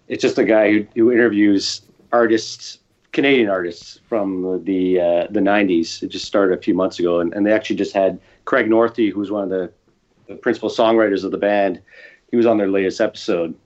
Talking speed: 205 wpm